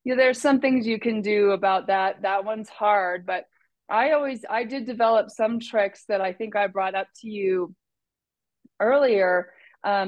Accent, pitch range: American, 180-210 Hz